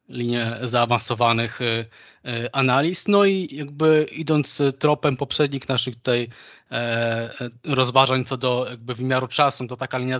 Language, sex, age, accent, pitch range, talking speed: Polish, male, 20-39, native, 120-140 Hz, 120 wpm